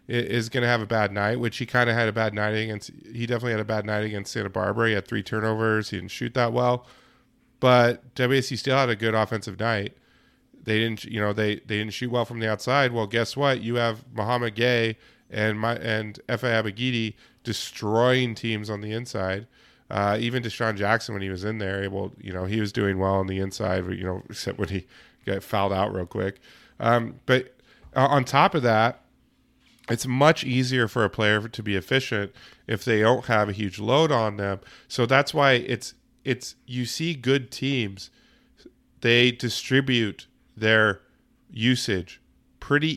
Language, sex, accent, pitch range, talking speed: English, male, American, 105-125 Hz, 195 wpm